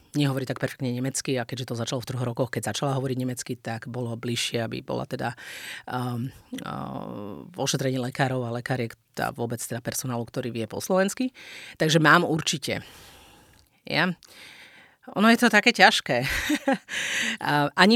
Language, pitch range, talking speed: Slovak, 125-150 Hz, 150 wpm